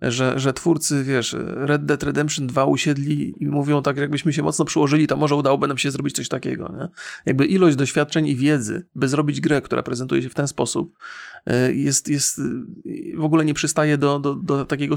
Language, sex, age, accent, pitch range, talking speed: Polish, male, 30-49, native, 125-150 Hz, 195 wpm